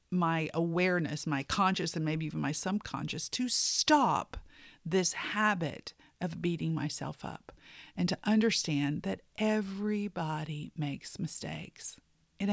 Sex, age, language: female, 50-69, English